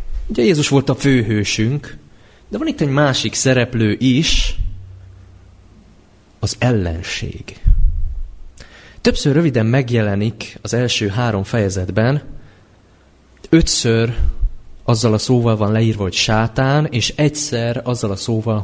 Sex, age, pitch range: male, 30-49, 95-135 Hz